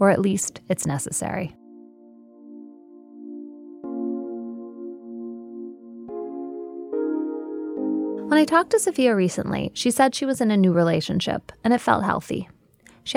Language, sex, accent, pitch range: English, female, American, 160-250 Hz